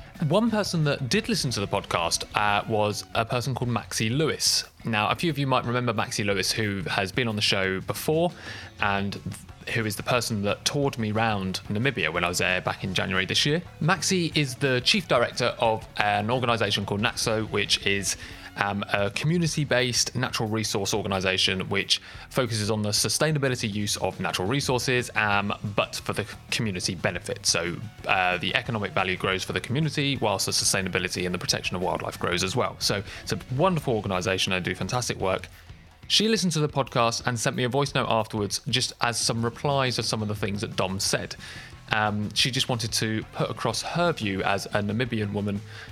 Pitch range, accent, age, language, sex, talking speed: 95-125 Hz, British, 20-39, English, male, 195 wpm